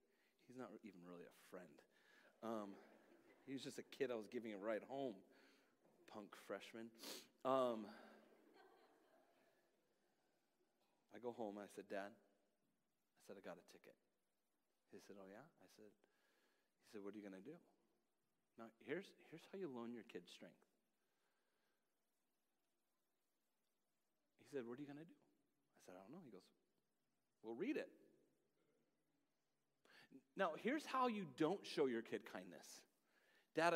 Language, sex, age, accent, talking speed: English, male, 40-59, American, 150 wpm